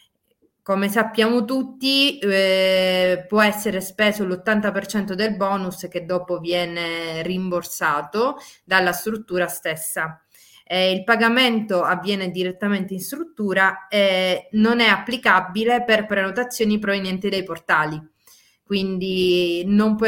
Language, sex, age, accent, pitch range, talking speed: Italian, female, 20-39, native, 175-205 Hz, 110 wpm